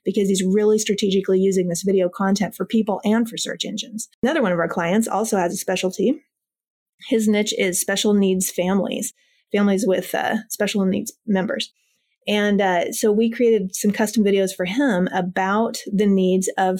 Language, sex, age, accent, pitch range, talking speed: English, female, 30-49, American, 190-225 Hz, 175 wpm